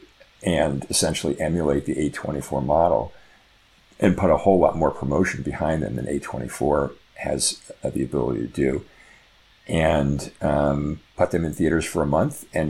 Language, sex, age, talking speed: English, male, 50-69, 150 wpm